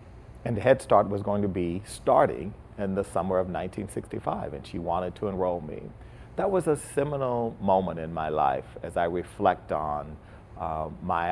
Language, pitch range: English, 90-115 Hz